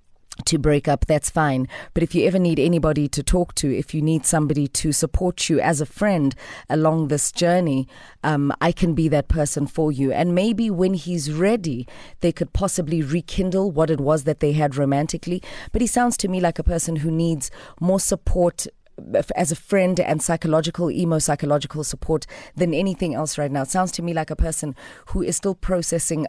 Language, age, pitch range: English, 30-49, 150-190 Hz